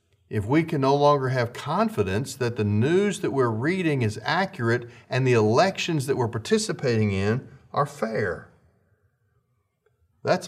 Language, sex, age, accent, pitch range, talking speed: English, male, 50-69, American, 105-135 Hz, 145 wpm